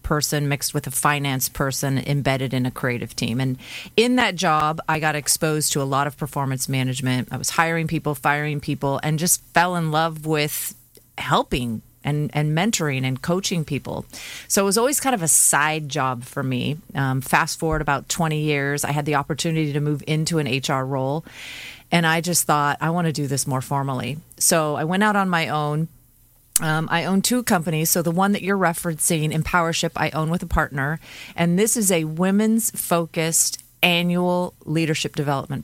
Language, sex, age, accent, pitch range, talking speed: English, female, 30-49, American, 140-170 Hz, 190 wpm